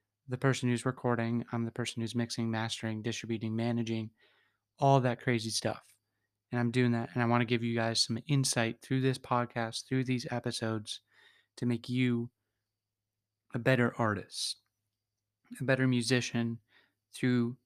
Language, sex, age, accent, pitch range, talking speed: English, male, 20-39, American, 110-125 Hz, 155 wpm